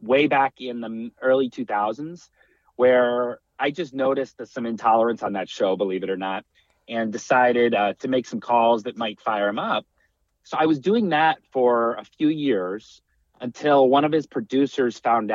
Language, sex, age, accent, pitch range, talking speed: English, male, 30-49, American, 105-130 Hz, 180 wpm